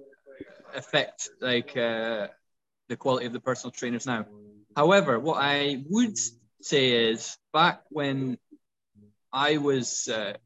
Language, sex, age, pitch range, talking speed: English, male, 20-39, 115-130 Hz, 120 wpm